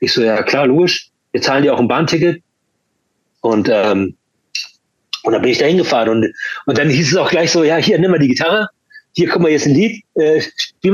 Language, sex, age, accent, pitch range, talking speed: German, male, 30-49, German, 130-175 Hz, 225 wpm